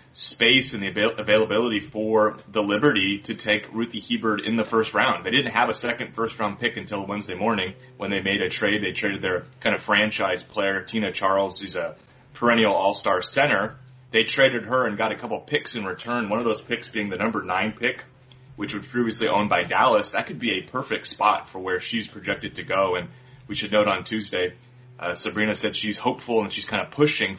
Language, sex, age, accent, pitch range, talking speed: English, male, 30-49, American, 105-125 Hz, 215 wpm